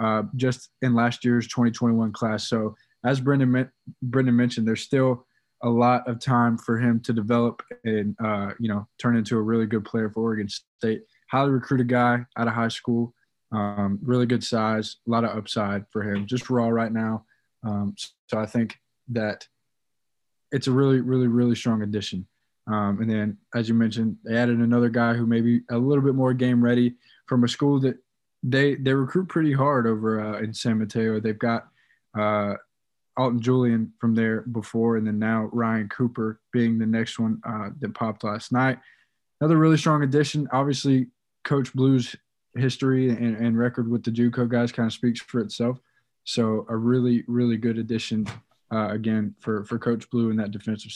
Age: 20-39